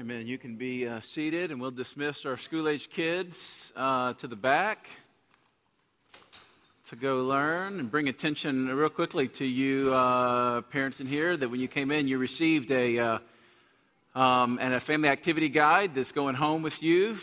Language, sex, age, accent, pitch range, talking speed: English, male, 50-69, American, 125-145 Hz, 180 wpm